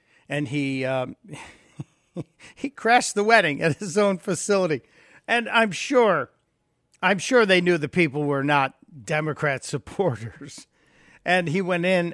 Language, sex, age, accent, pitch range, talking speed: English, male, 60-79, American, 140-175 Hz, 140 wpm